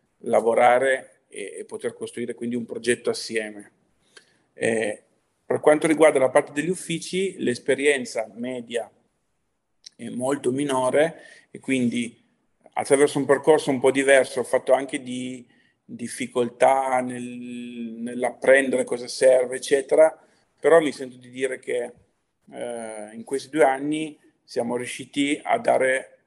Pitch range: 125-150 Hz